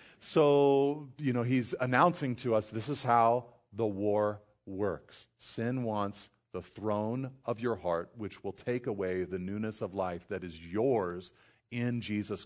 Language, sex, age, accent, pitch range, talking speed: English, male, 40-59, American, 95-120 Hz, 160 wpm